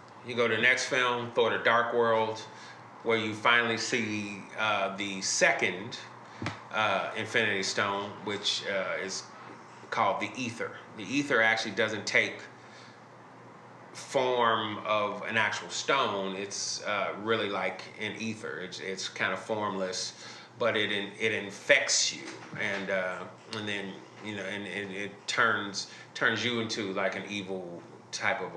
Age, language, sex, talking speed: 30-49, English, male, 150 wpm